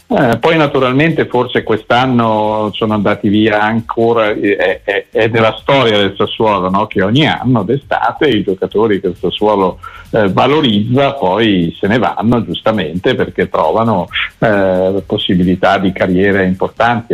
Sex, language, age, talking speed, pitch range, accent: male, Italian, 50-69, 140 wpm, 95-120 Hz, native